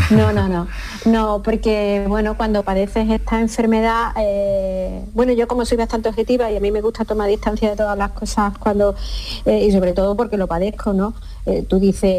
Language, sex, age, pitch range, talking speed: Spanish, female, 30-49, 195-225 Hz, 195 wpm